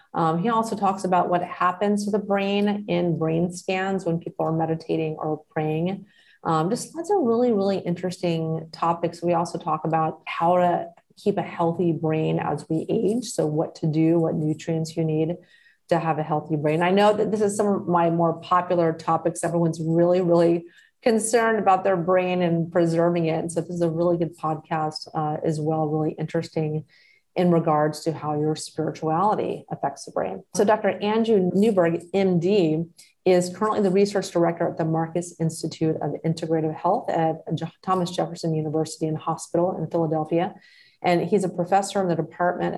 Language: English